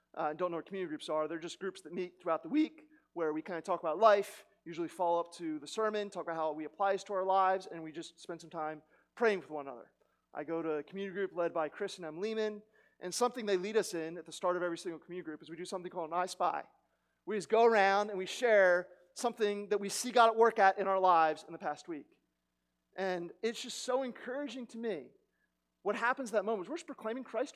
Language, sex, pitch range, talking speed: English, male, 165-220 Hz, 260 wpm